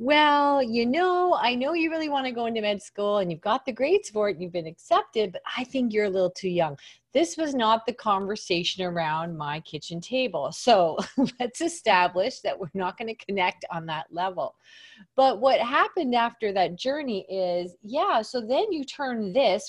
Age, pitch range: 30-49, 165-230 Hz